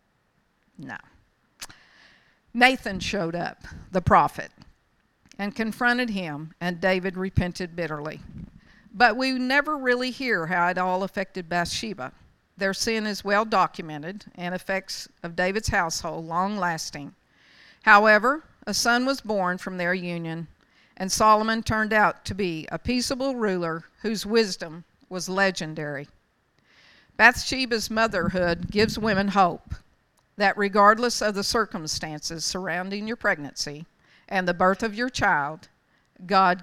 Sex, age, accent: female, 50-69, American